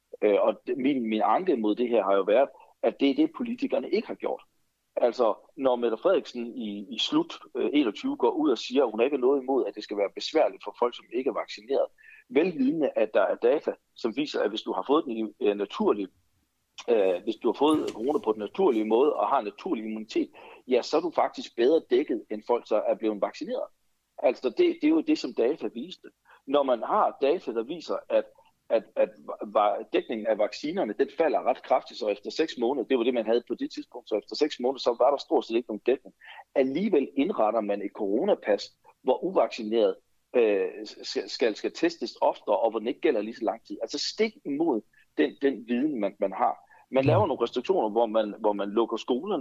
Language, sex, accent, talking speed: Danish, male, native, 215 wpm